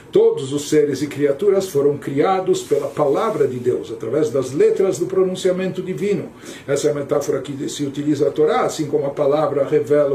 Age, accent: 60-79, Brazilian